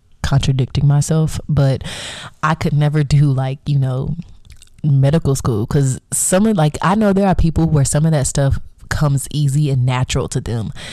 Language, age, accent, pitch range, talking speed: English, 20-39, American, 130-155 Hz, 175 wpm